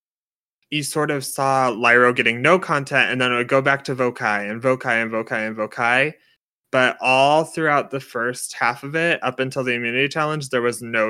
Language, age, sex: English, 20-39, male